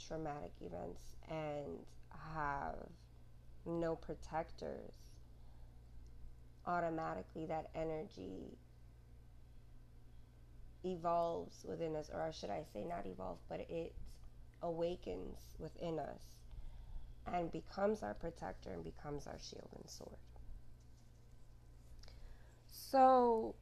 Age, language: 20-39, English